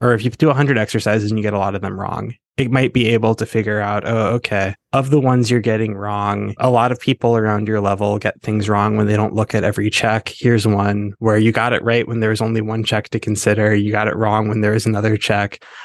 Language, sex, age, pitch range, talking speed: English, male, 20-39, 105-125 Hz, 265 wpm